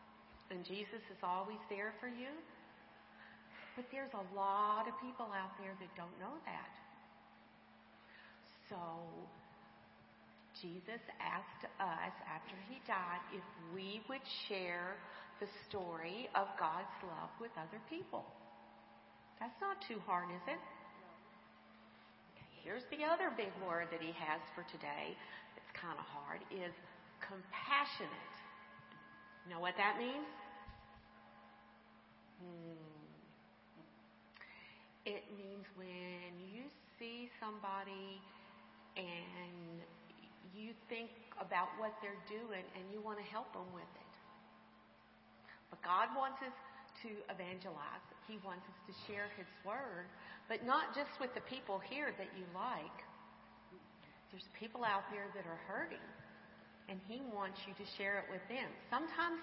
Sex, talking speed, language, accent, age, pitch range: female, 125 wpm, English, American, 50-69, 180-235 Hz